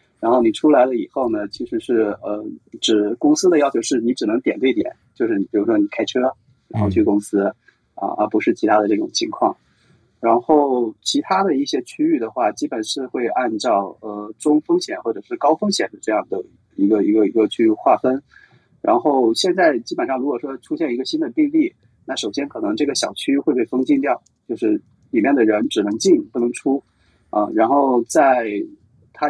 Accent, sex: native, male